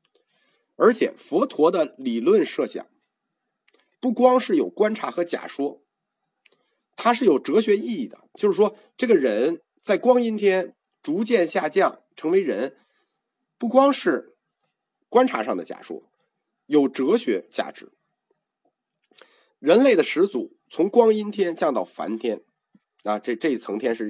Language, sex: Chinese, male